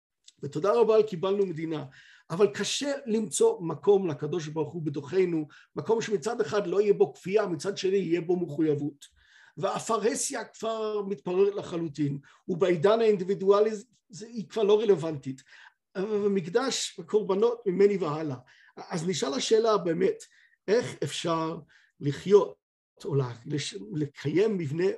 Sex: male